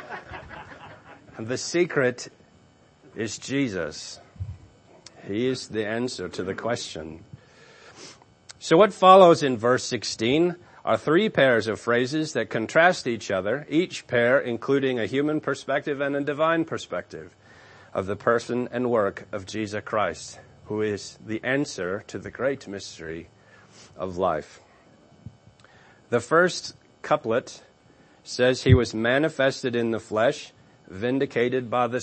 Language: English